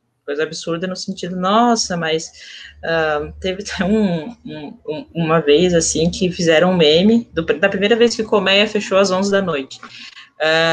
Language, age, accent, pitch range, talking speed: Portuguese, 20-39, Brazilian, 165-195 Hz, 180 wpm